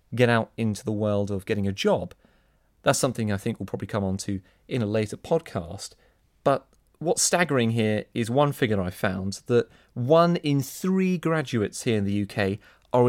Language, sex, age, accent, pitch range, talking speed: English, male, 30-49, British, 105-155 Hz, 190 wpm